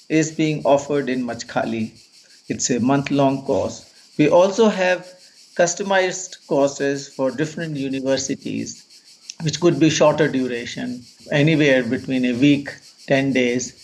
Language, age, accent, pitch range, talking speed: English, 50-69, Indian, 135-165 Hz, 120 wpm